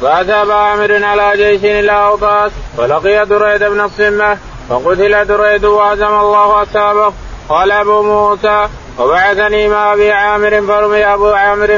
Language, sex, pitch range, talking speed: Arabic, male, 205-210 Hz, 125 wpm